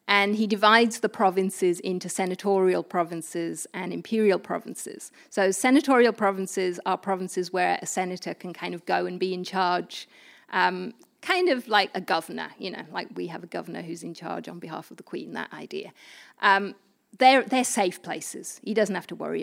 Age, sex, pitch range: 30-49, female, 180-215 Hz